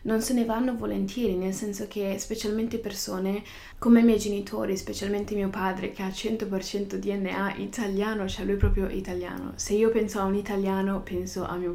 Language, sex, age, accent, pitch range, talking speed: Italian, female, 20-39, native, 185-220 Hz, 185 wpm